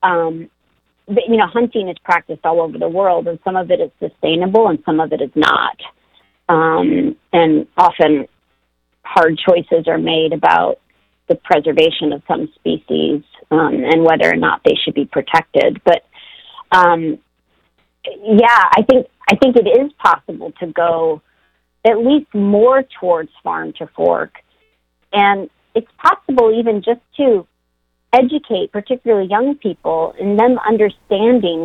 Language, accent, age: English, American, 40-59